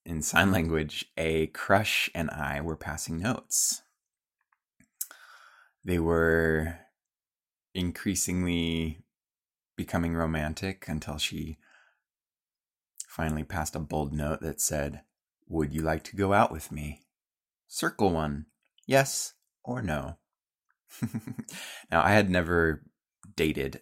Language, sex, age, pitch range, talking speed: English, male, 20-39, 75-100 Hz, 105 wpm